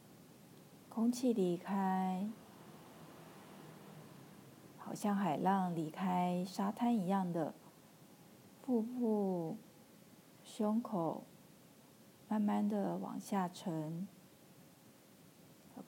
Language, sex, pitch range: Chinese, female, 175-215 Hz